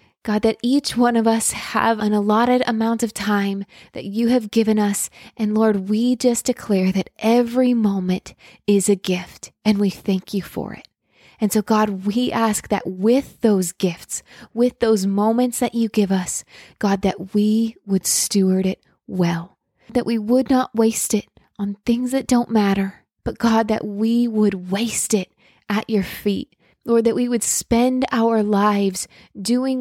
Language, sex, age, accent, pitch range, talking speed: English, female, 20-39, American, 200-235 Hz, 175 wpm